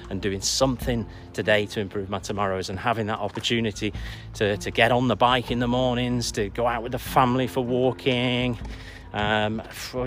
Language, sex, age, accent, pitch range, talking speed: English, male, 40-59, British, 105-130 Hz, 180 wpm